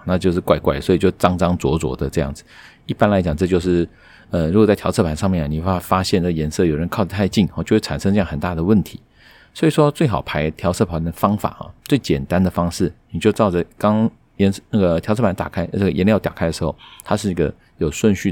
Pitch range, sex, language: 80-100 Hz, male, Chinese